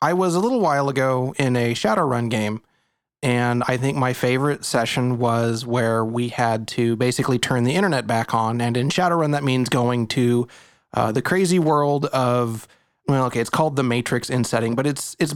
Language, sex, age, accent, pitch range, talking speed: English, male, 30-49, American, 120-145 Hz, 195 wpm